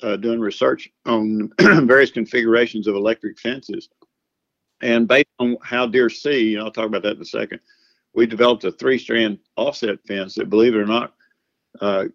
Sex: male